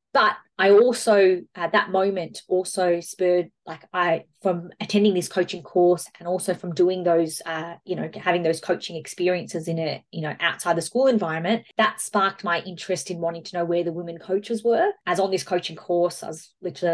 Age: 20-39